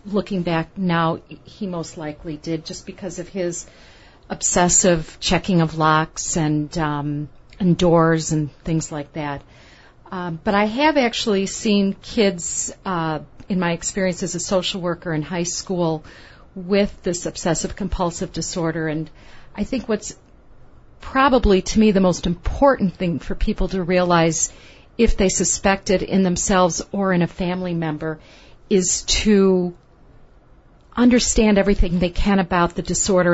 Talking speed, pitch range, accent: 145 wpm, 165-195 Hz, American